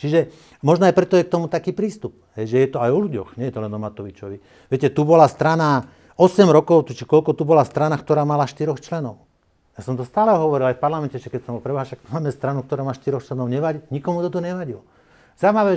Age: 50-69